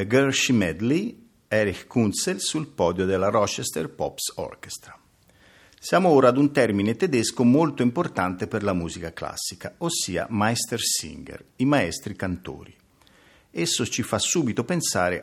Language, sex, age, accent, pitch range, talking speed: Italian, male, 50-69, native, 90-130 Hz, 130 wpm